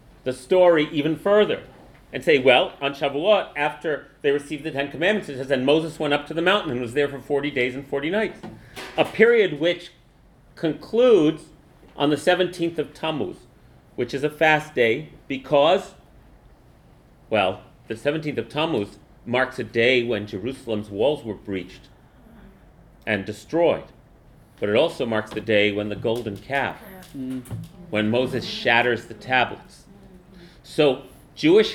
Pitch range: 130-165 Hz